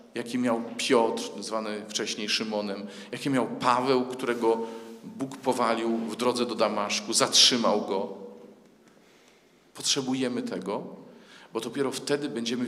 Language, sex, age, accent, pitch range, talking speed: Polish, male, 40-59, native, 115-145 Hz, 115 wpm